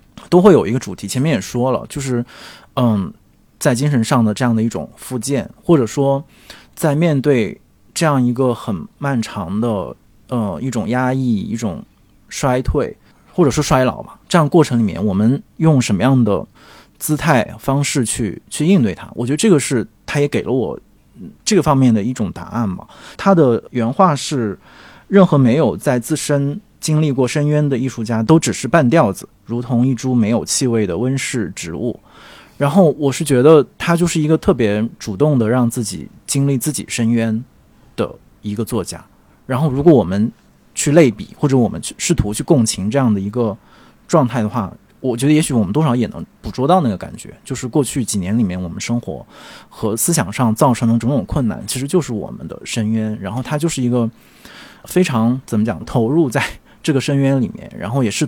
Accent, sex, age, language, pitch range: native, male, 20-39, Chinese, 115-145 Hz